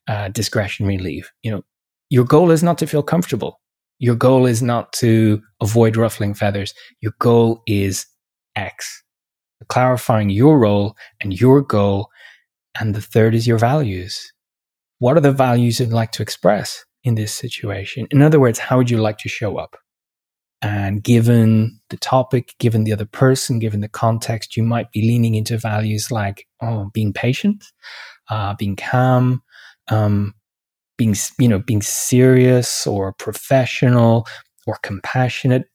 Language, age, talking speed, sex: English, 20-39, 150 wpm, male